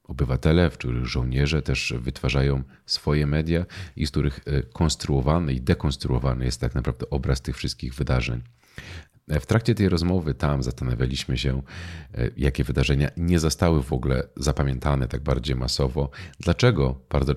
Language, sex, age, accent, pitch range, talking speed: Polish, male, 40-59, native, 65-75 Hz, 140 wpm